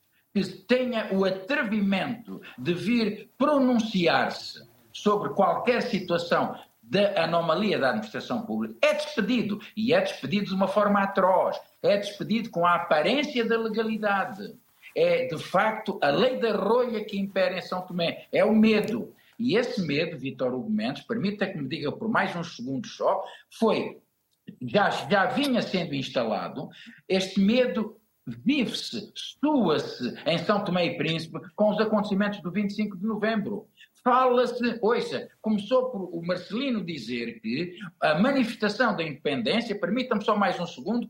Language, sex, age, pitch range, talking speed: Portuguese, male, 50-69, 185-240 Hz, 145 wpm